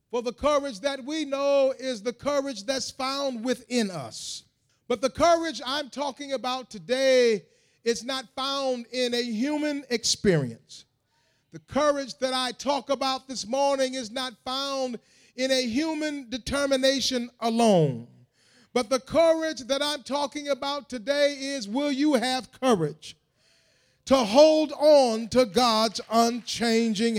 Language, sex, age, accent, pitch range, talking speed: English, male, 40-59, American, 240-300 Hz, 135 wpm